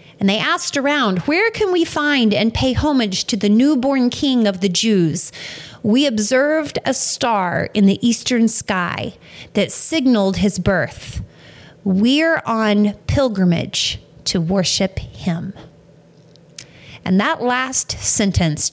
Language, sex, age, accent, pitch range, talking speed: English, female, 30-49, American, 175-235 Hz, 130 wpm